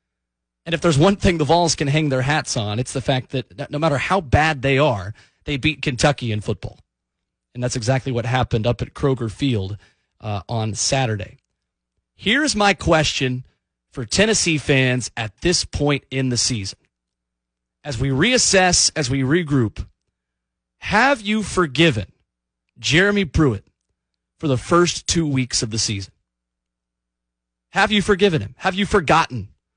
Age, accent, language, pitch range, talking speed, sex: 30-49, American, English, 100-160 Hz, 155 wpm, male